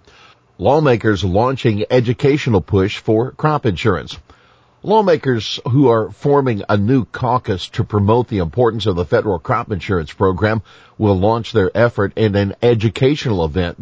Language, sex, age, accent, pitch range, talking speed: English, male, 50-69, American, 95-125 Hz, 140 wpm